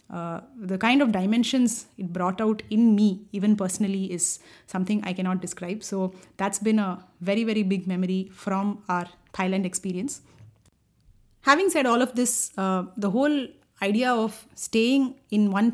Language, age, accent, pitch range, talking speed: English, 30-49, Indian, 185-220 Hz, 160 wpm